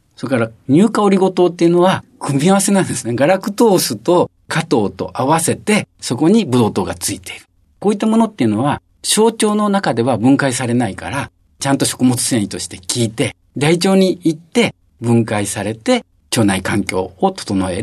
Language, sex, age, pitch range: Japanese, male, 50-69, 115-190 Hz